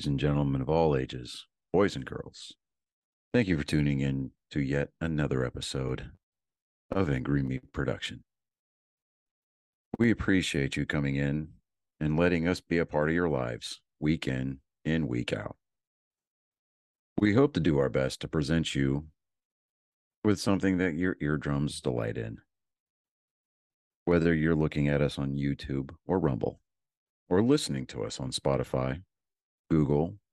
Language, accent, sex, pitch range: English, American, male, 70-85 Hz